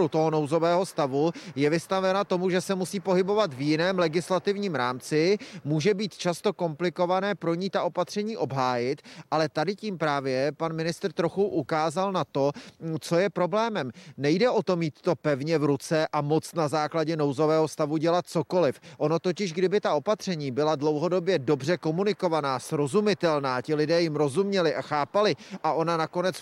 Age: 30-49